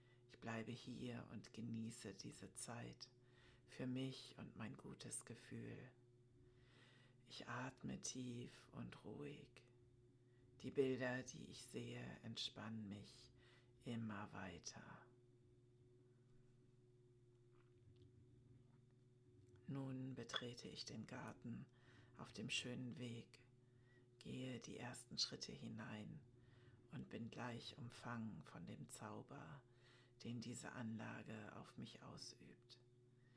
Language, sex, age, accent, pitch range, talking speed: German, female, 60-79, German, 120-125 Hz, 95 wpm